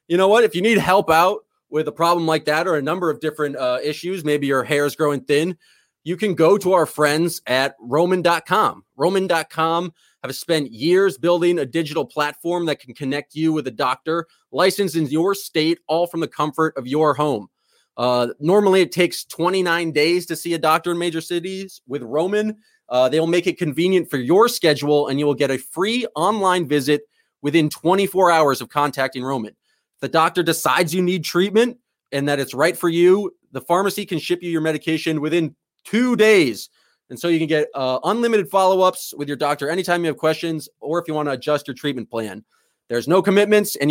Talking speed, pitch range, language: 200 wpm, 150-185 Hz, English